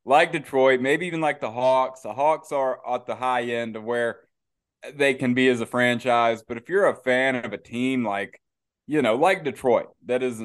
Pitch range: 115-140 Hz